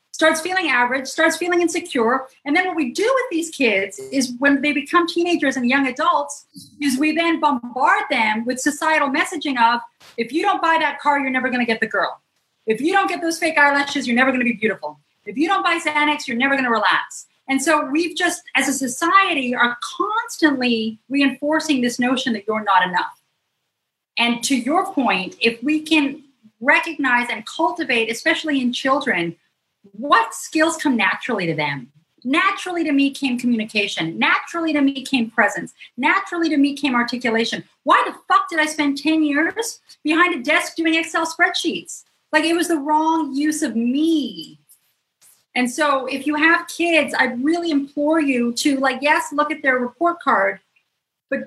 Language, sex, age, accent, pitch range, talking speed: English, female, 40-59, American, 250-325 Hz, 180 wpm